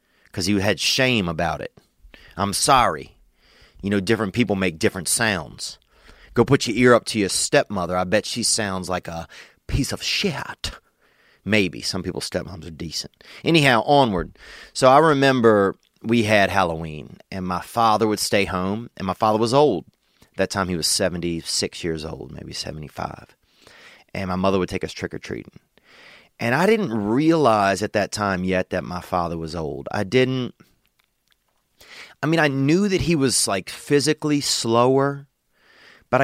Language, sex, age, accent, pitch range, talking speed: English, male, 30-49, American, 90-125 Hz, 165 wpm